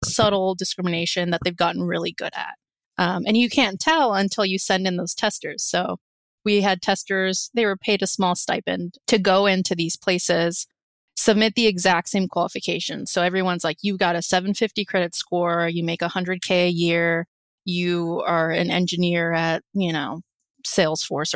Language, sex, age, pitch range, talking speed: English, female, 20-39, 170-200 Hz, 170 wpm